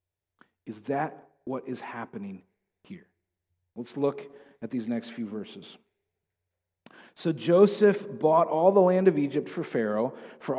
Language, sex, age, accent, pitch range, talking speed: English, male, 40-59, American, 125-175 Hz, 135 wpm